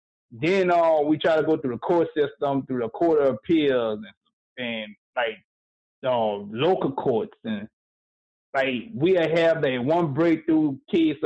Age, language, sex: 30-49, English, male